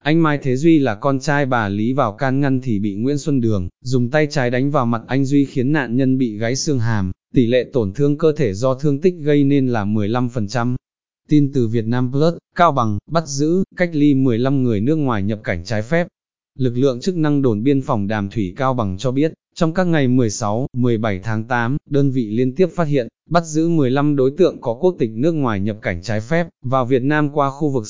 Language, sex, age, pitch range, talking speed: Vietnamese, male, 20-39, 115-145 Hz, 235 wpm